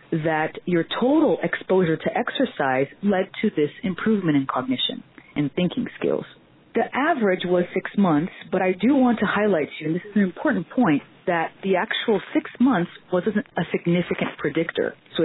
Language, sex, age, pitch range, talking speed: English, female, 30-49, 155-225 Hz, 175 wpm